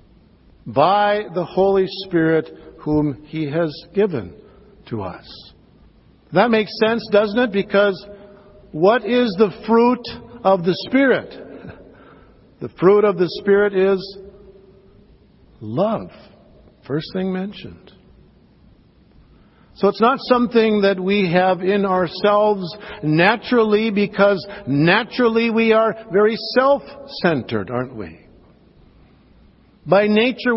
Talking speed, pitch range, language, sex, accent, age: 105 wpm, 155-205 Hz, English, male, American, 60-79